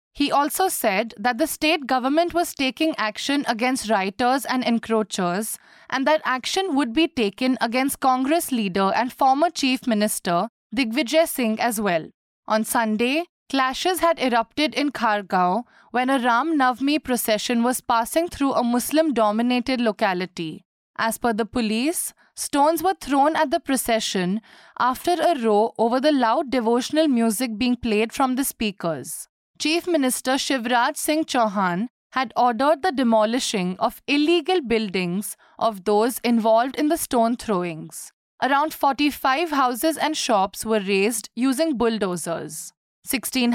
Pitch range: 220-290 Hz